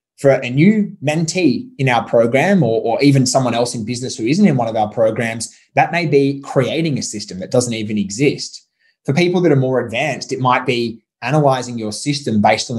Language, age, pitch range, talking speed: English, 20-39, 110-150 Hz, 210 wpm